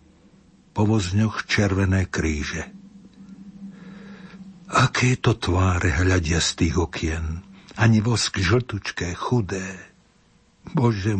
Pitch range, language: 95-120 Hz, Slovak